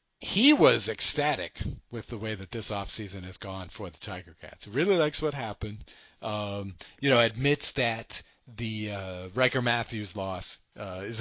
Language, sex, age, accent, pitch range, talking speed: English, male, 40-59, American, 105-135 Hz, 165 wpm